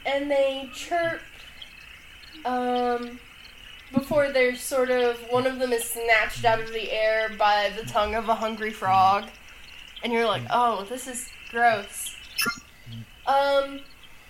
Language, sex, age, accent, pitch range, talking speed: English, female, 10-29, American, 225-290 Hz, 135 wpm